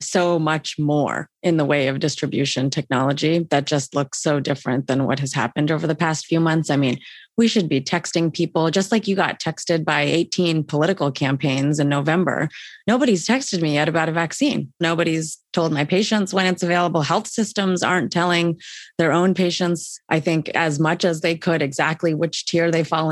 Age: 30-49